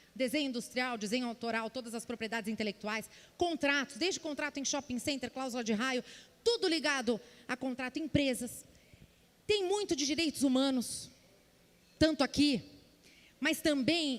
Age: 30-49